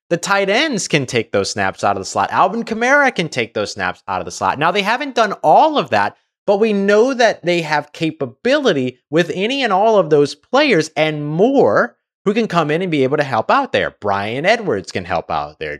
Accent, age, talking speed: American, 30-49, 230 wpm